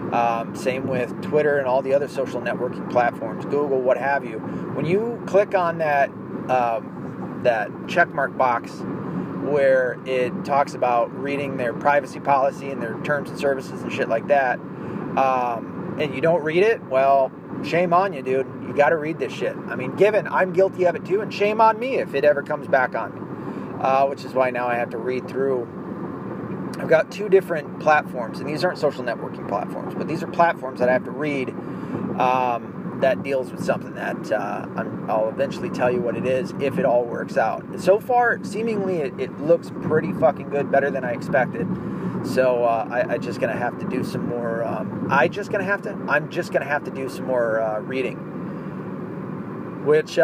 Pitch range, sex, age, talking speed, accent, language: 130-185 Hz, male, 30-49, 200 wpm, American, English